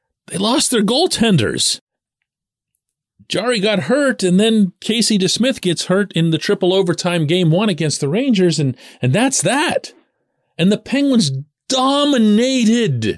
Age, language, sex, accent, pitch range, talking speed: 40-59, English, male, American, 145-220 Hz, 135 wpm